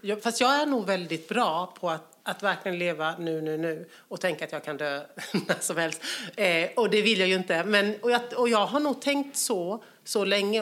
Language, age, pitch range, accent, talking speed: English, 40-59, 165-220 Hz, Swedish, 220 wpm